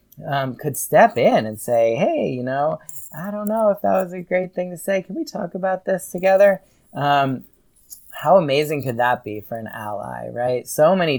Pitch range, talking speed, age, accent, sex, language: 115-145 Hz, 205 wpm, 30-49, American, male, English